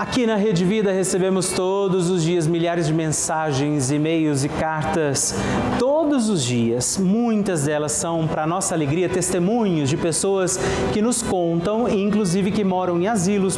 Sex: male